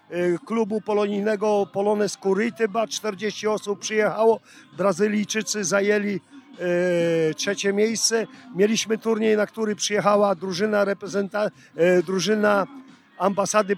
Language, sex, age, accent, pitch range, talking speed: Polish, male, 50-69, native, 195-215 Hz, 85 wpm